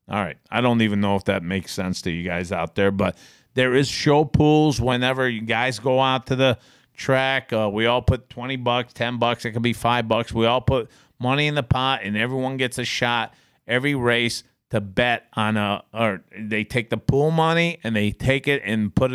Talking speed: 225 wpm